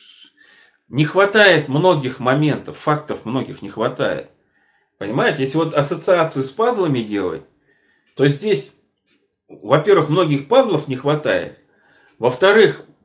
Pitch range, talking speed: 140-190 Hz, 105 wpm